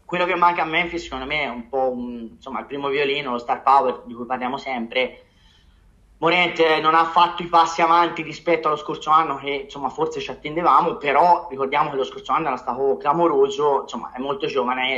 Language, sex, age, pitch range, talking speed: Italian, male, 20-39, 135-170 Hz, 210 wpm